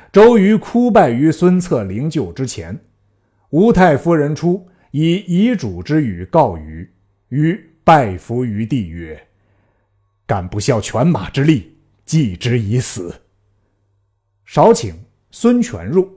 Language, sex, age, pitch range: Chinese, male, 50-69, 100-150 Hz